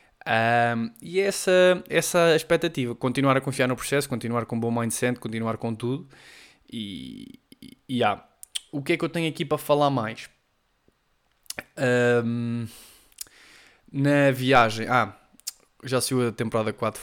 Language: Portuguese